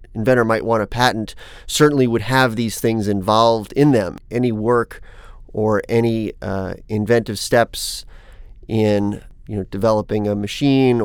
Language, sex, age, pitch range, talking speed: English, male, 30-49, 105-120 Hz, 140 wpm